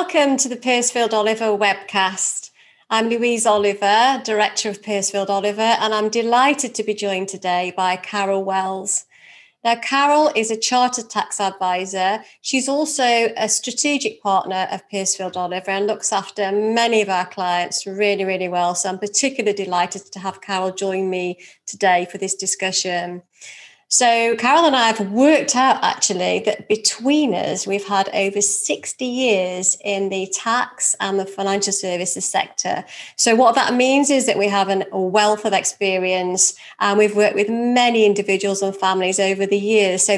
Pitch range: 190-220 Hz